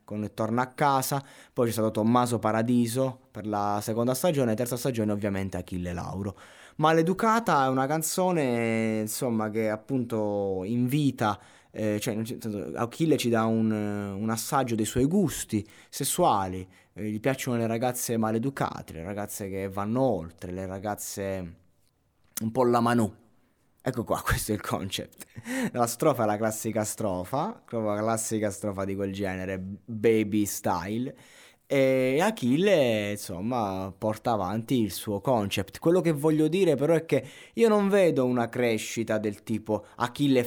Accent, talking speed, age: native, 150 wpm, 20-39